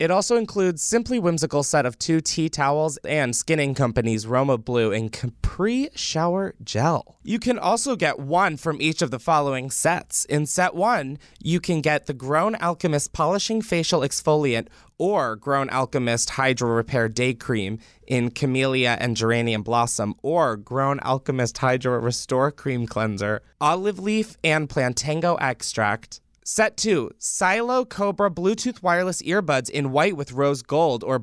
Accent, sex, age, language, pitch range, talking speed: American, male, 20-39, English, 125-175 Hz, 150 wpm